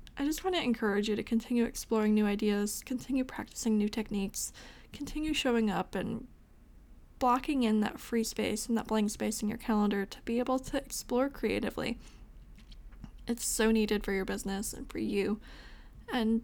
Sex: female